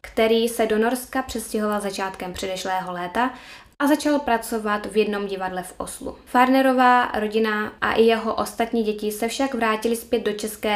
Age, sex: 10-29, female